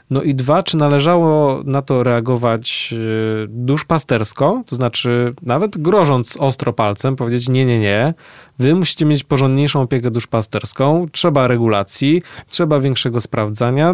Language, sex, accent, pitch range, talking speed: Polish, male, native, 120-145 Hz, 130 wpm